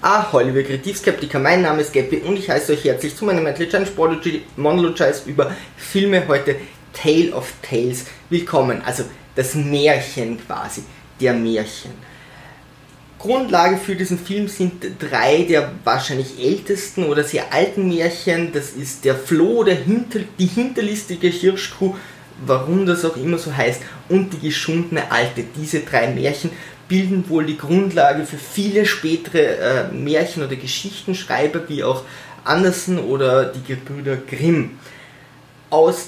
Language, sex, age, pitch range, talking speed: German, male, 20-39, 145-190 Hz, 140 wpm